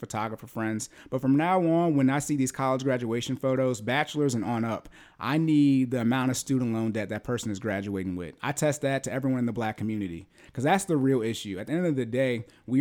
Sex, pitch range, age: male, 105-130 Hz, 30-49